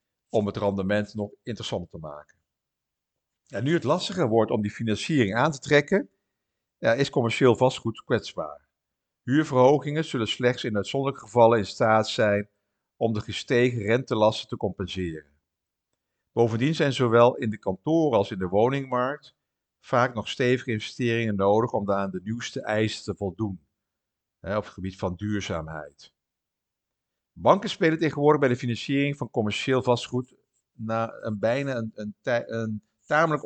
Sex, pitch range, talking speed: male, 105-135 Hz, 140 wpm